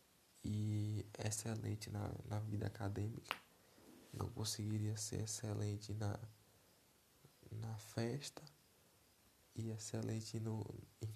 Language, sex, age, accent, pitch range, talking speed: Portuguese, male, 20-39, Brazilian, 105-115 Hz, 90 wpm